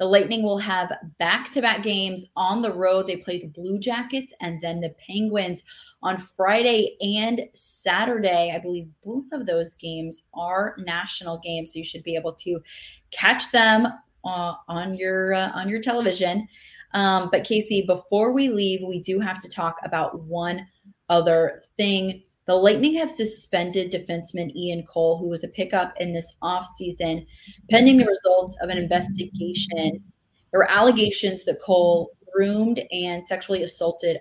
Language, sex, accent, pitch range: English, female, American, 170-205 Hz